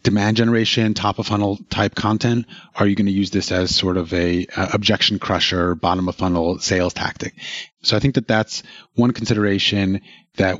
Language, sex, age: English, male, 30-49